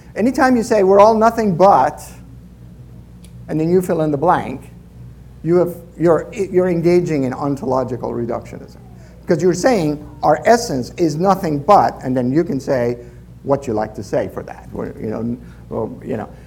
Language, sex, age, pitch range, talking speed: English, male, 50-69, 120-180 Hz, 175 wpm